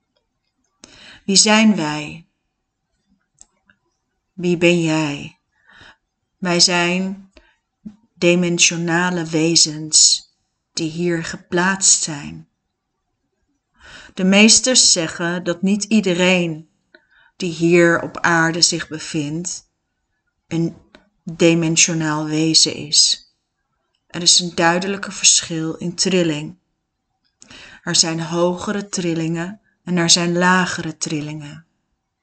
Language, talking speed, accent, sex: Dutch, 85 wpm, Dutch, female